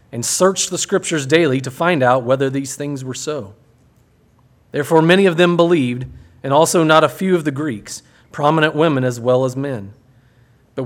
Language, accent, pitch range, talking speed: English, American, 120-150 Hz, 180 wpm